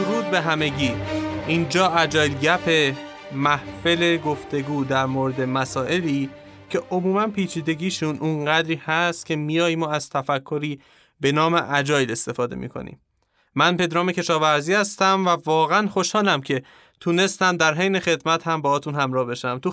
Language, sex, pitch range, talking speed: Persian, male, 140-175 Hz, 135 wpm